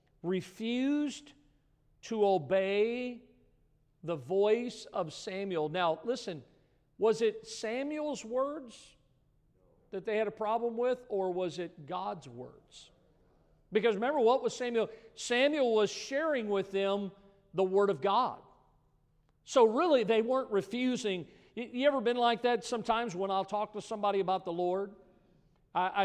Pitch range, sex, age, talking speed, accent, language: 155-210 Hz, male, 50-69, 135 wpm, American, English